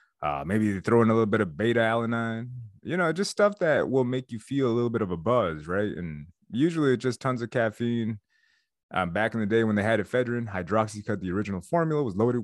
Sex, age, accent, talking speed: male, 30-49, American, 235 wpm